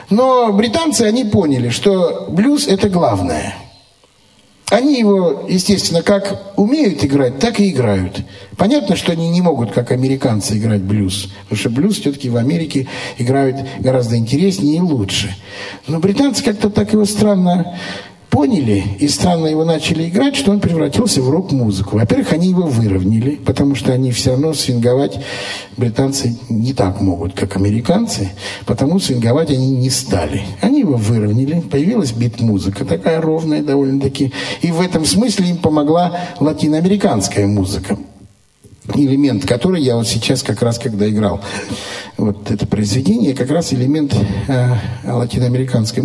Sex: male